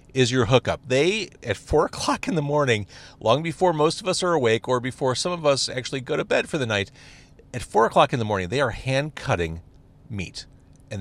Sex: male